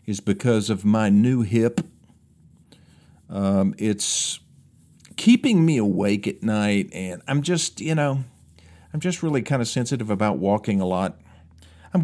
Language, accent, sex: English, American, male